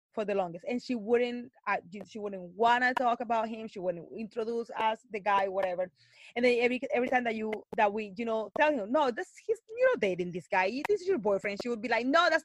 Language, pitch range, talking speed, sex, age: English, 210-285 Hz, 250 wpm, female, 20-39